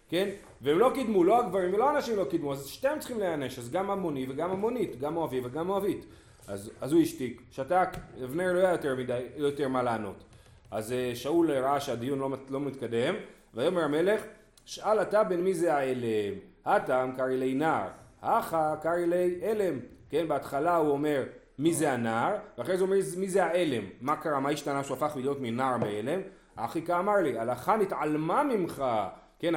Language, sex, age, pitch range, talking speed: Hebrew, male, 30-49, 125-175 Hz, 180 wpm